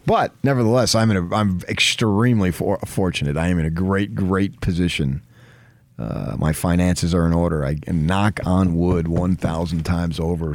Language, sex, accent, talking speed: English, male, American, 165 wpm